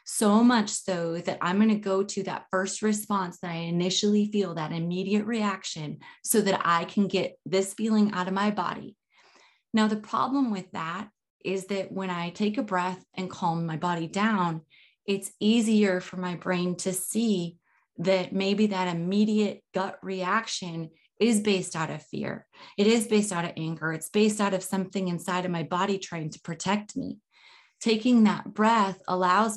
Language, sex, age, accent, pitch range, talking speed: English, female, 30-49, American, 175-210 Hz, 180 wpm